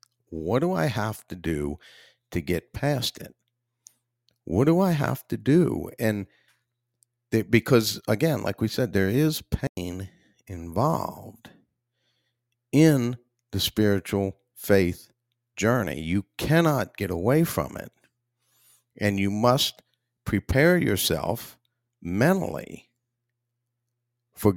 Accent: American